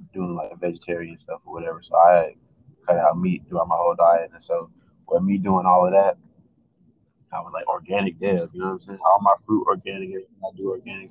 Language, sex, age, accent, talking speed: English, male, 20-39, American, 215 wpm